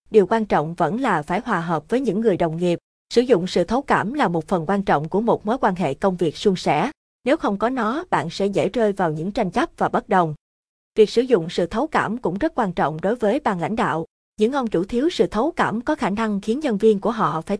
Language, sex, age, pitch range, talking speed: Vietnamese, female, 20-39, 180-235 Hz, 265 wpm